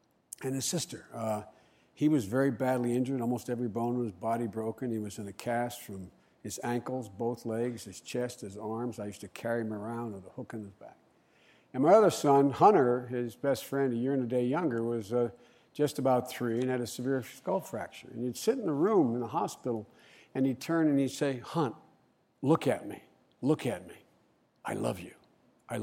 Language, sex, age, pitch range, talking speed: English, male, 60-79, 115-145 Hz, 215 wpm